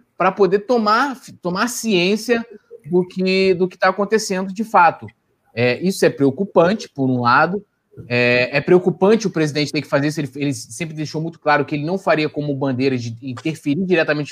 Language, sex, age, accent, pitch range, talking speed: Portuguese, male, 20-39, Brazilian, 145-195 Hz, 185 wpm